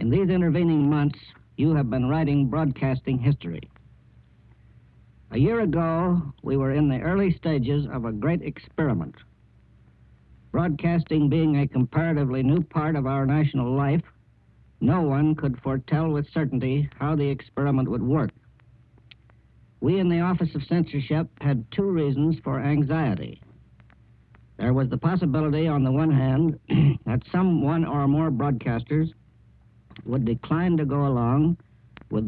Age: 60-79